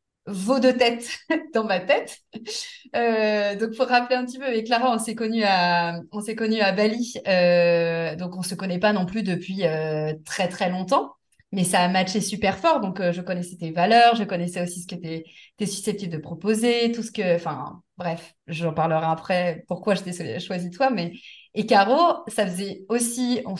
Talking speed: 200 wpm